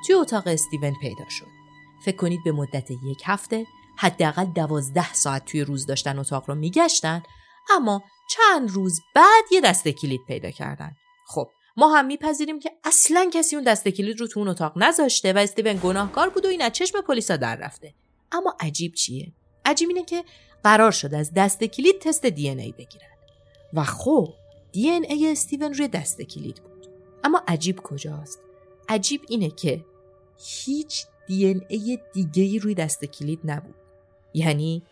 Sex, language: female, Persian